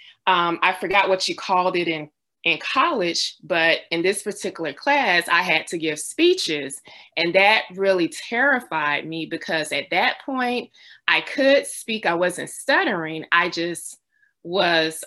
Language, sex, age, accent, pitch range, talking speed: English, female, 20-39, American, 165-205 Hz, 150 wpm